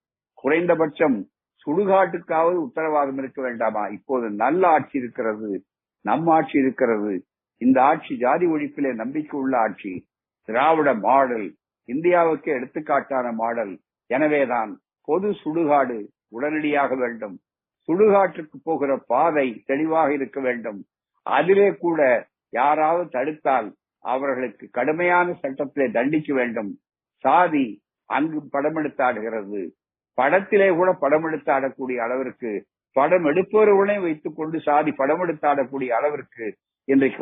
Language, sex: Tamil, male